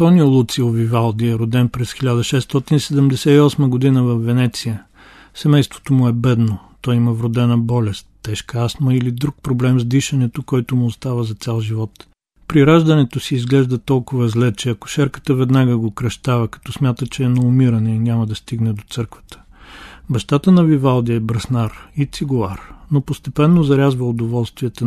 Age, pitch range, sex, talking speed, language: 40-59, 115-135 Hz, male, 155 wpm, Bulgarian